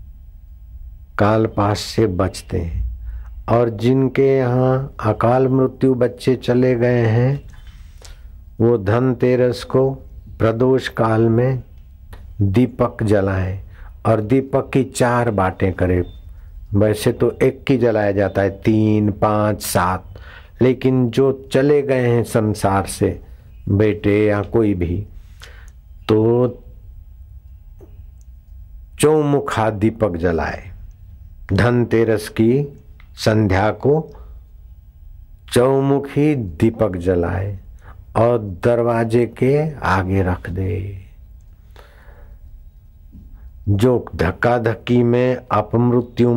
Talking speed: 90 wpm